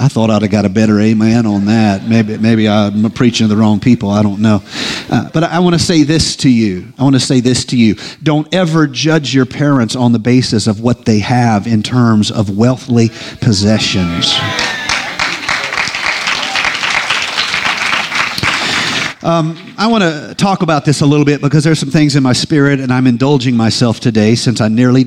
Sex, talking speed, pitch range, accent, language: male, 190 wpm, 115-150 Hz, American, English